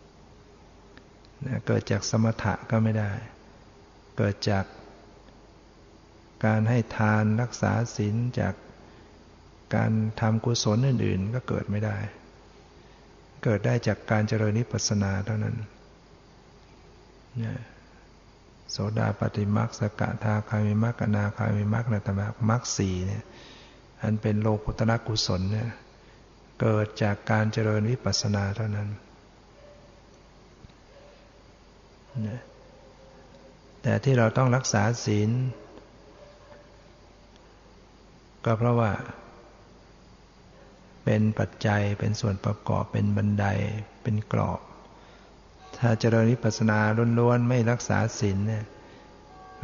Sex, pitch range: male, 105-115 Hz